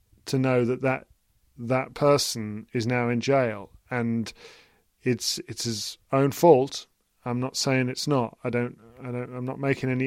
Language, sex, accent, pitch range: English, male, British, 110-130 Hz